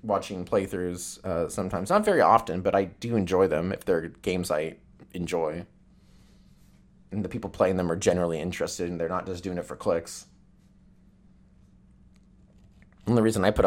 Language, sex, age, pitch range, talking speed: English, male, 30-49, 90-110 Hz, 170 wpm